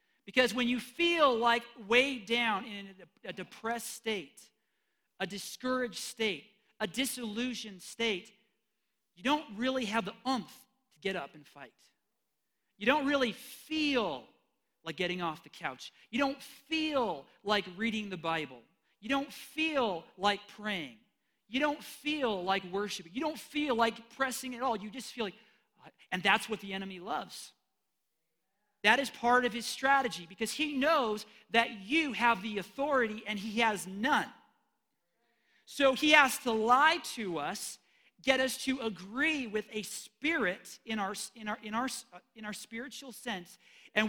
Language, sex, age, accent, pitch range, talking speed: English, male, 40-59, American, 210-270 Hz, 155 wpm